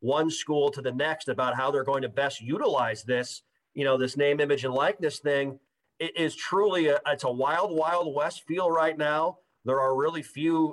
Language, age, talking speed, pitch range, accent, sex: English, 40-59, 200 wpm, 125-160 Hz, American, male